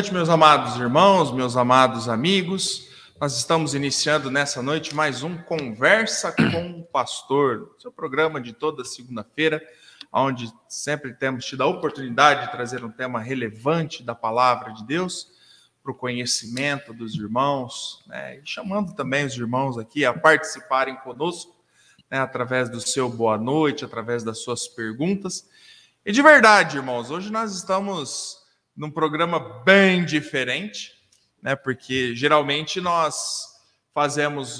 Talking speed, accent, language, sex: 135 wpm, Brazilian, Portuguese, male